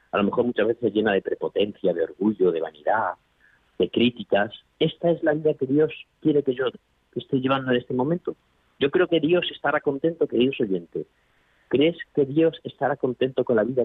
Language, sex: Spanish, male